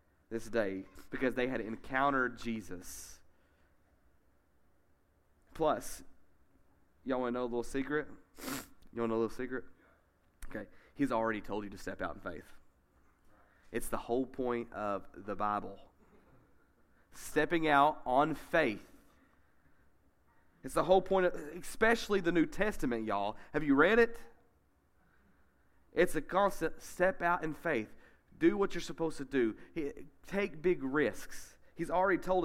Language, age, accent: English, 30-49, American